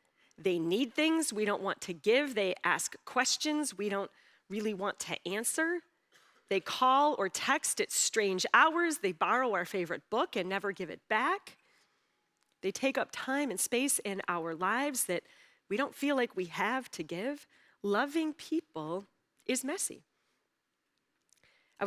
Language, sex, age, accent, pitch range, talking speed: English, female, 30-49, American, 205-285 Hz, 155 wpm